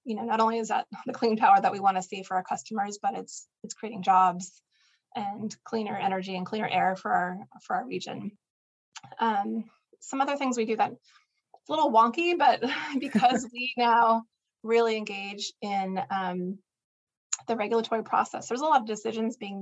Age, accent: 20-39, American